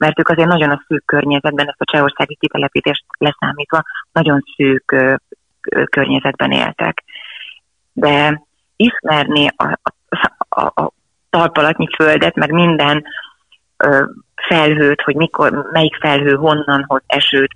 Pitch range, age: 140-160 Hz, 30-49